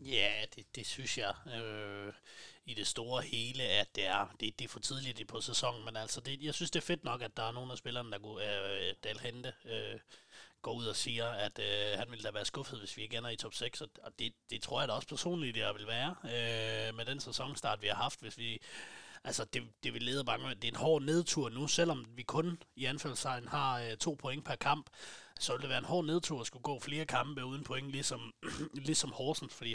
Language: Danish